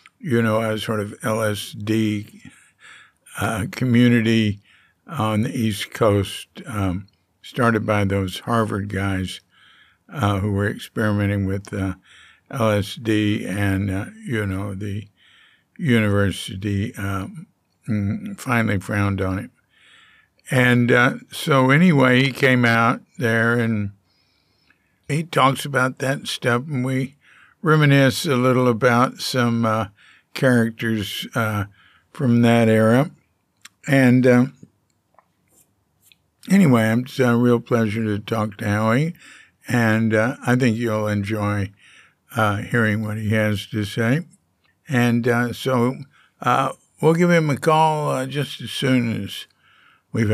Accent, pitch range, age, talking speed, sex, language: American, 105-130 Hz, 60-79, 120 wpm, male, English